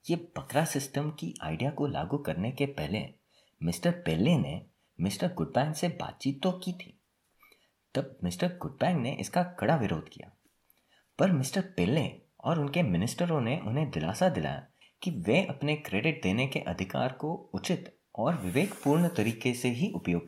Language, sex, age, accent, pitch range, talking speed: Hindi, male, 30-49, native, 110-155 Hz, 155 wpm